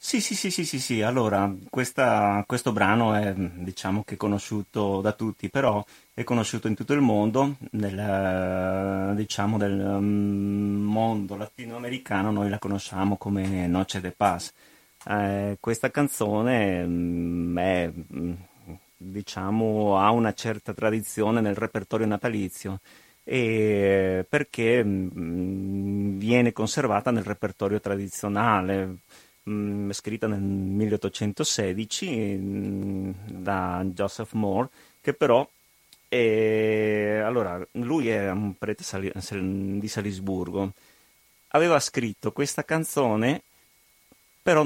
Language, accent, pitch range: Italian, native, 100-115 Hz